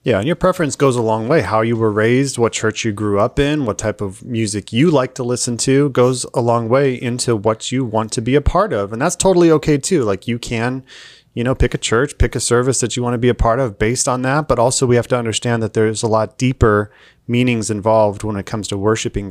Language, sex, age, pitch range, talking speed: English, male, 30-49, 110-130 Hz, 265 wpm